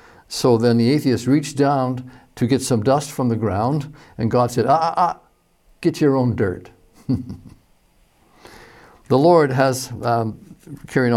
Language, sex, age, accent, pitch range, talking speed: English, male, 60-79, American, 115-145 Hz, 150 wpm